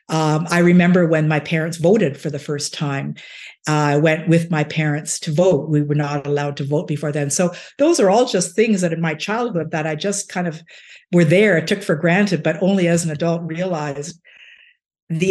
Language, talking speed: English, 210 wpm